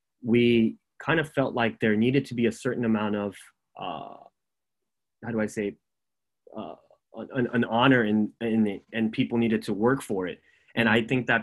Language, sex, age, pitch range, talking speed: English, male, 20-39, 105-120 Hz, 190 wpm